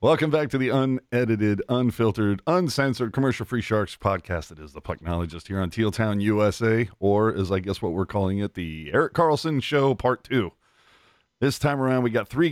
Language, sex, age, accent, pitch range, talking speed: English, male, 40-59, American, 100-135 Hz, 185 wpm